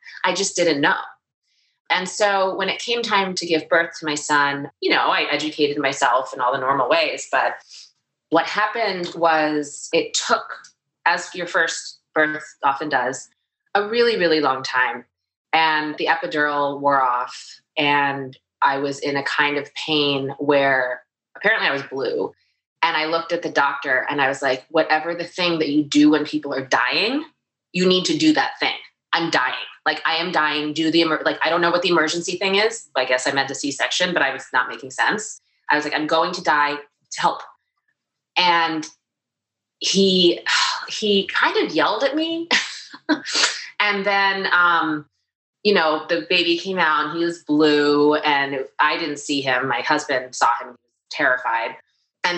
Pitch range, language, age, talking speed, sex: 145-180 Hz, English, 20-39, 180 wpm, female